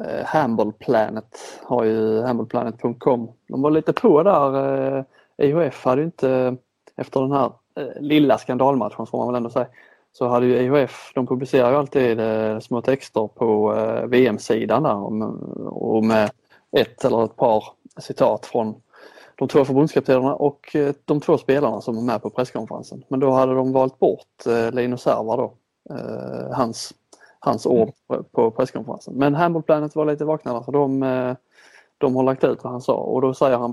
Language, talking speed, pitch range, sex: Swedish, 160 wpm, 115-135 Hz, male